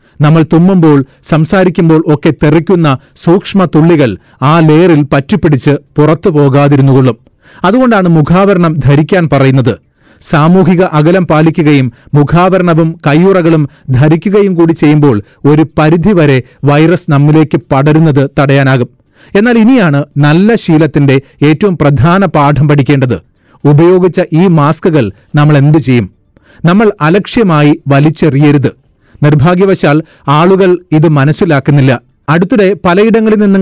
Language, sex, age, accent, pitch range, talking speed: Malayalam, male, 40-59, native, 145-180 Hz, 95 wpm